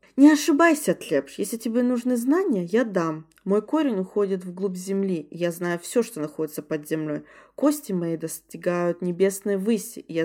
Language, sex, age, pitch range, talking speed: Russian, female, 20-39, 170-225 Hz, 160 wpm